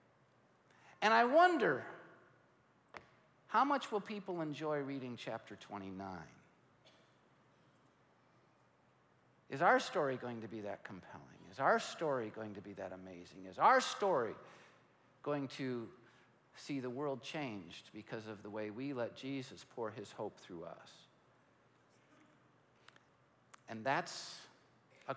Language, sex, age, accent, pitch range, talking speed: English, male, 50-69, American, 120-170 Hz, 120 wpm